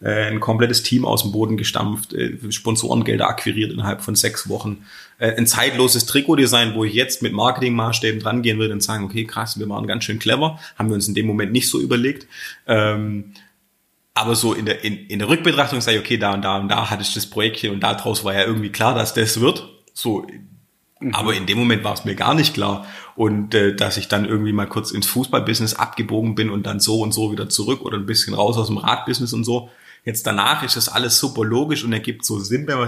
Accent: German